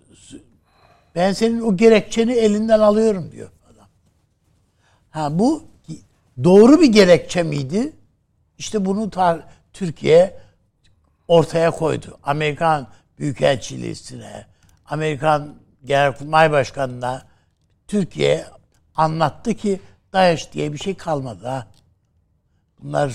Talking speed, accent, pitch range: 90 wpm, native, 125-185 Hz